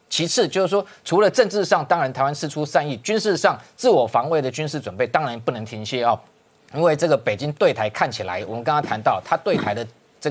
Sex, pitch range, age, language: male, 135-180 Hz, 30-49, Chinese